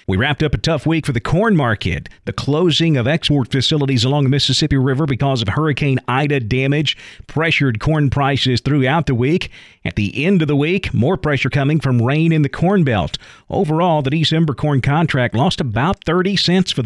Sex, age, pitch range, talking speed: male, 40-59, 120-150 Hz, 195 wpm